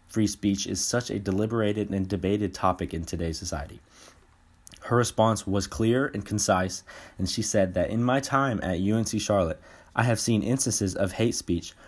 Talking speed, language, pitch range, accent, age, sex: 175 wpm, English, 95-115 Hz, American, 20-39, male